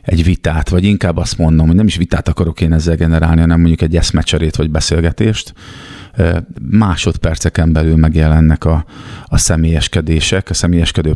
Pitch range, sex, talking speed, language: 80-95 Hz, male, 150 wpm, Hungarian